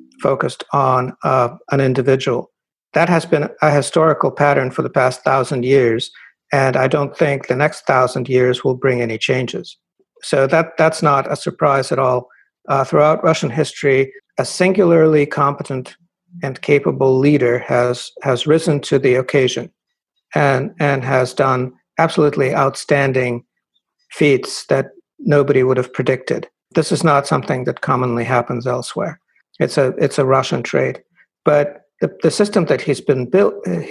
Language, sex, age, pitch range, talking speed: English, male, 60-79, 135-160 Hz, 150 wpm